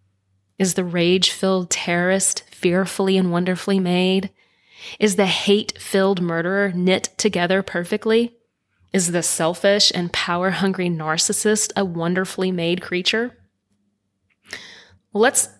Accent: American